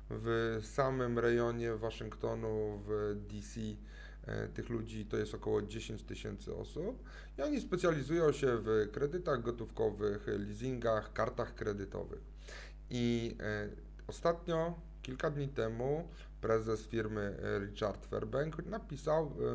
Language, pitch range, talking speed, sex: Polish, 110-155 Hz, 105 wpm, male